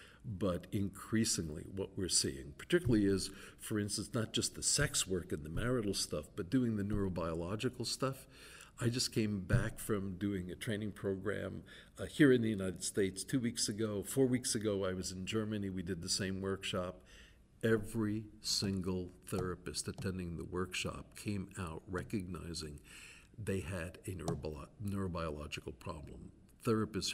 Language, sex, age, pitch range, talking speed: English, male, 60-79, 95-115 Hz, 150 wpm